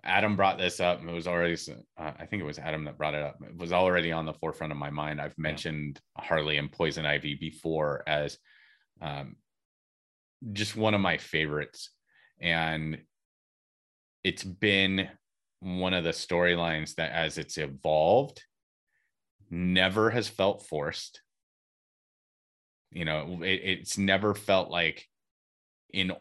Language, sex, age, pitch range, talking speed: English, male, 30-49, 75-100 Hz, 145 wpm